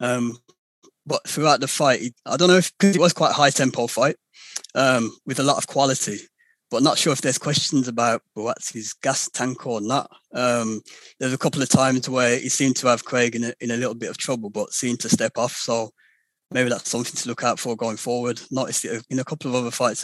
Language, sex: English, male